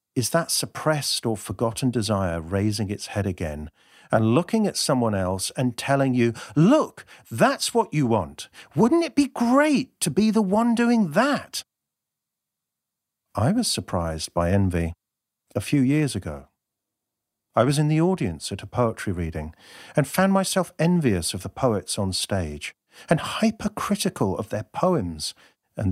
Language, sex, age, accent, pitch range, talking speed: English, male, 50-69, British, 95-150 Hz, 155 wpm